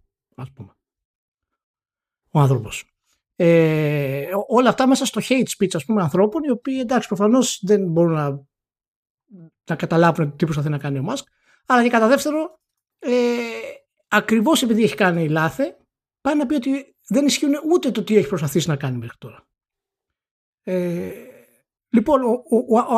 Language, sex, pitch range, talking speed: Greek, male, 150-230 Hz, 155 wpm